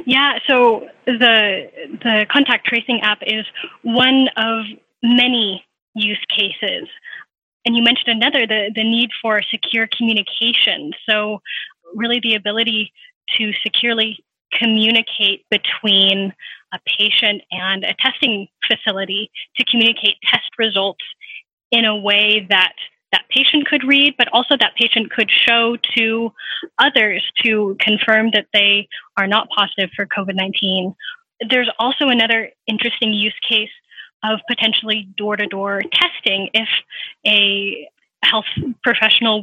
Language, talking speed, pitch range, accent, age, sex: English, 120 wpm, 205-240 Hz, American, 10-29, female